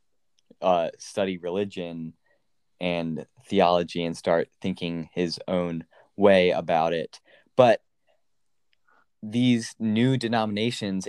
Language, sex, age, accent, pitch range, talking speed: English, male, 20-39, American, 95-110 Hz, 90 wpm